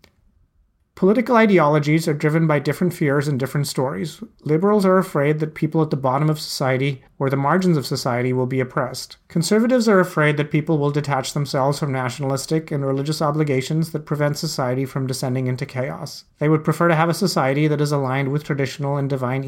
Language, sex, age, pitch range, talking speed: English, male, 30-49, 135-165 Hz, 190 wpm